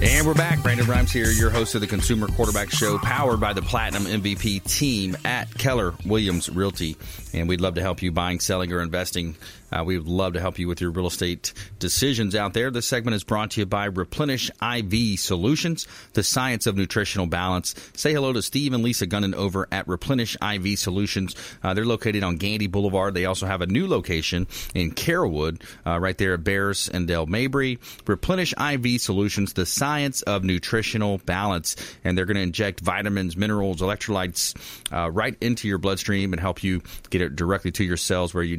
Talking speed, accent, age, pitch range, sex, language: 195 wpm, American, 30-49, 90-110 Hz, male, English